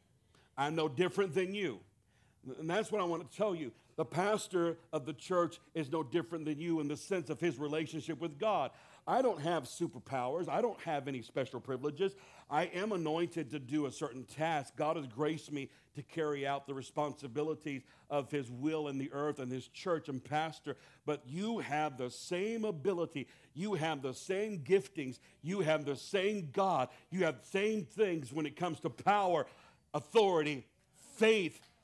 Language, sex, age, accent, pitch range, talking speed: English, male, 60-79, American, 150-210 Hz, 185 wpm